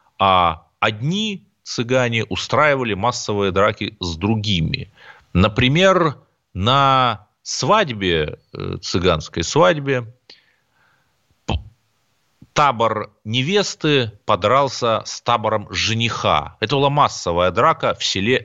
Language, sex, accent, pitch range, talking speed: Russian, male, native, 95-135 Hz, 80 wpm